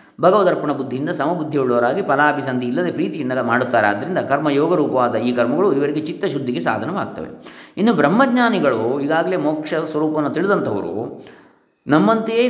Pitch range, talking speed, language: 110-155 Hz, 145 wpm, English